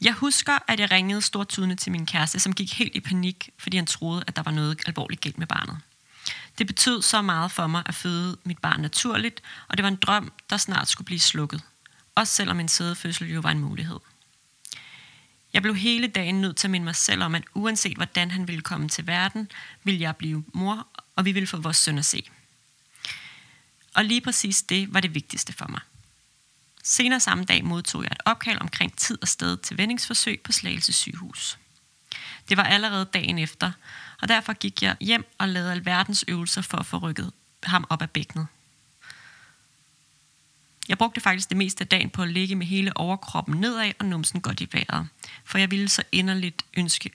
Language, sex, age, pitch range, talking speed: Danish, female, 30-49, 160-205 Hz, 200 wpm